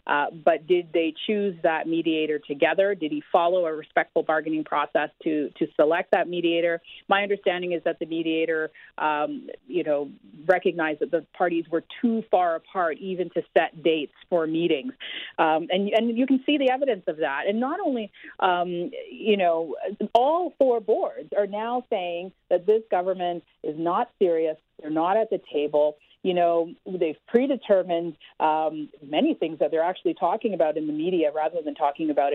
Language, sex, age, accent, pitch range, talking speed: English, female, 40-59, American, 160-225 Hz, 175 wpm